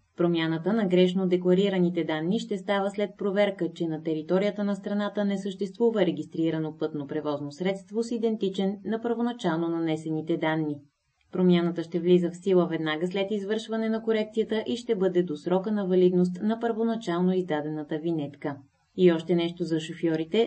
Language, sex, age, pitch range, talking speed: Bulgarian, female, 20-39, 170-210 Hz, 150 wpm